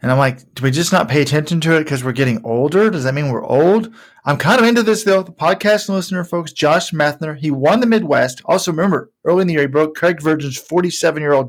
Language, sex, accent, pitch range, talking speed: English, male, American, 130-170 Hz, 245 wpm